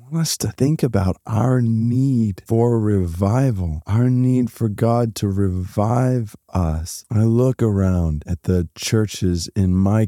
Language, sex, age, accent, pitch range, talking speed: English, male, 40-59, American, 100-135 Hz, 135 wpm